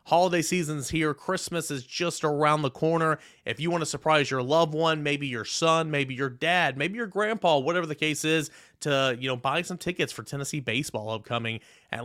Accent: American